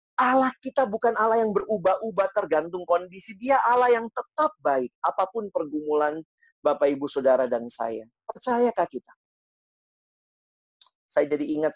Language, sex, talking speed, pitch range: Indonesian, male, 130 wpm, 150-235 Hz